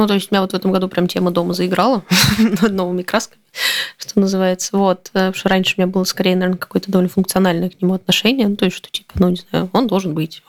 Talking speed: 245 wpm